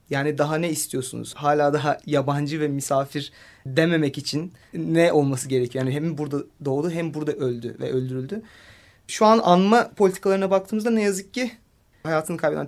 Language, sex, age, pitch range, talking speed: Turkish, male, 30-49, 150-215 Hz, 155 wpm